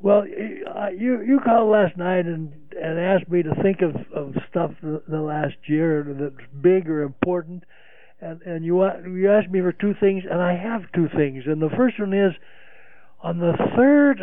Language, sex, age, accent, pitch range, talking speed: English, male, 60-79, American, 140-185 Hz, 190 wpm